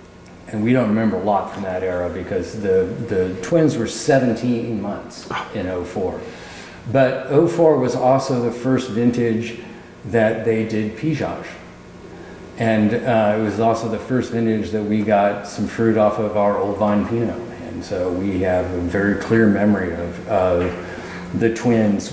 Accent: American